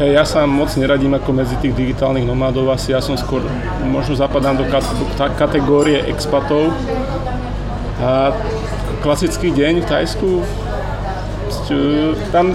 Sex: male